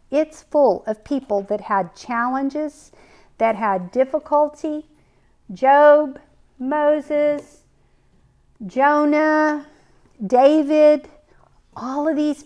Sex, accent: female, American